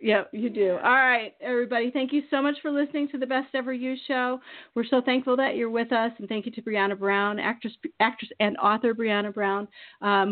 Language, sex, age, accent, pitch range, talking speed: English, female, 40-59, American, 180-225 Hz, 225 wpm